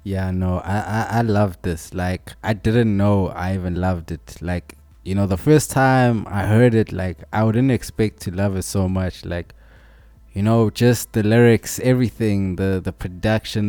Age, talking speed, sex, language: 20-39, 190 wpm, male, English